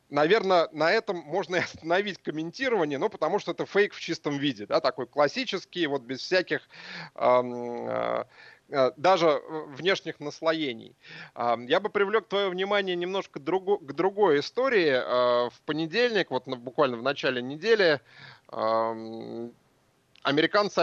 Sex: male